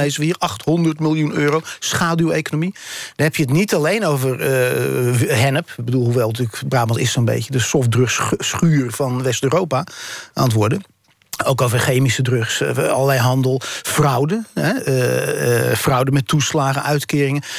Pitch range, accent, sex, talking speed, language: 135-165 Hz, Dutch, male, 135 wpm, Dutch